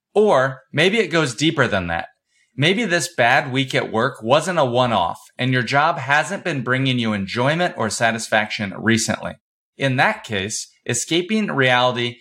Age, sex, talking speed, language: 30-49, male, 155 wpm, English